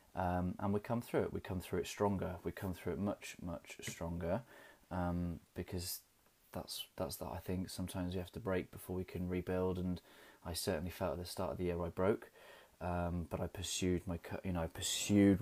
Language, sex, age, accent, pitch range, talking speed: English, male, 20-39, British, 85-95 Hz, 215 wpm